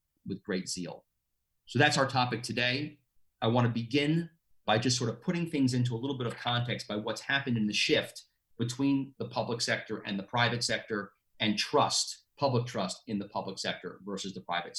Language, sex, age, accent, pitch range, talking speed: English, male, 40-59, American, 105-125 Hz, 200 wpm